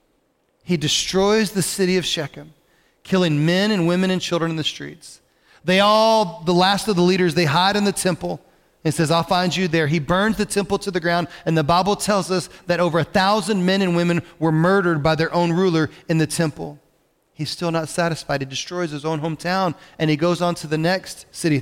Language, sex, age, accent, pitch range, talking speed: English, male, 40-59, American, 165-205 Hz, 215 wpm